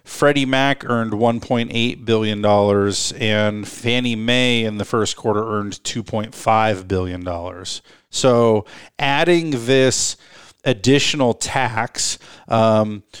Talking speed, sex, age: 95 wpm, male, 40-59